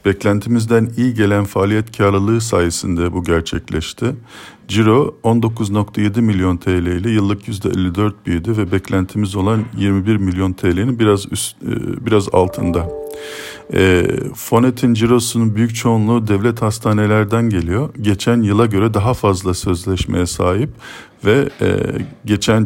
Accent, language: native, Turkish